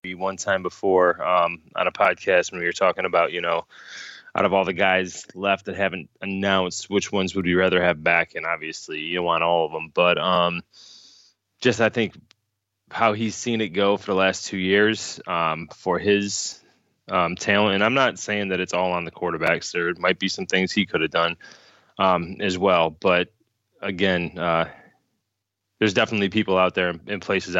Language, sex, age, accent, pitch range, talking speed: English, male, 20-39, American, 90-105 Hz, 195 wpm